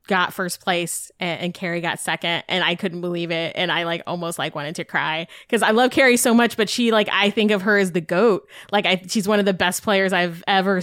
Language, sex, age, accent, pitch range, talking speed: English, female, 20-39, American, 190-260 Hz, 260 wpm